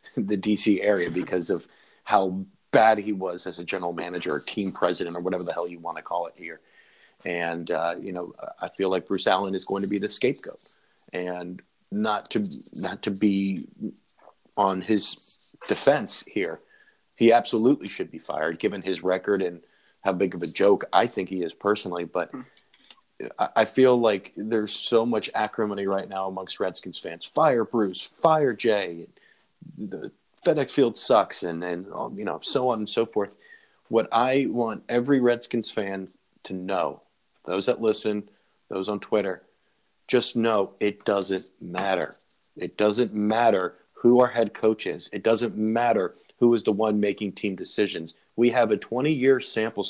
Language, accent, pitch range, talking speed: English, American, 95-115 Hz, 170 wpm